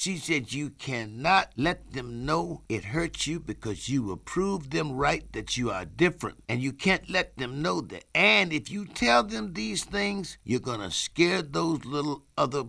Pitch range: 130-205 Hz